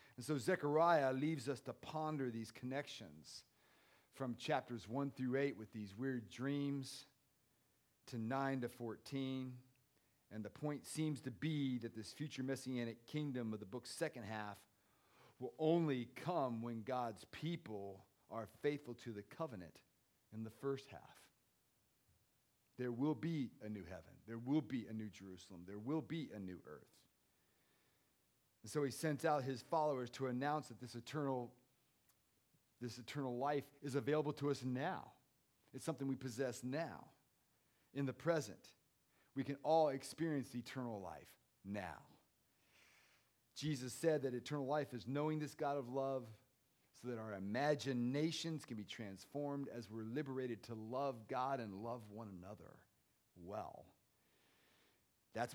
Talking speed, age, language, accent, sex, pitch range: 145 wpm, 40-59, English, American, male, 115-145 Hz